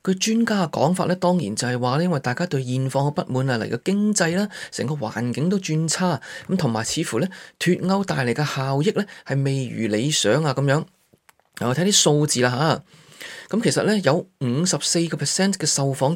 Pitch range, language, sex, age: 140-185 Hz, Chinese, male, 20-39